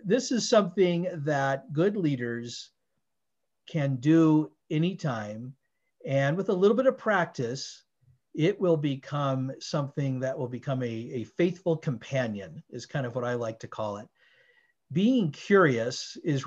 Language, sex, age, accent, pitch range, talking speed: English, male, 50-69, American, 130-165 Hz, 140 wpm